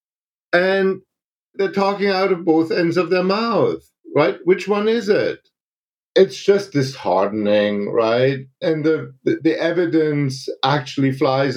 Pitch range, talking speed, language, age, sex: 145-180 Hz, 135 wpm, English, 50-69, male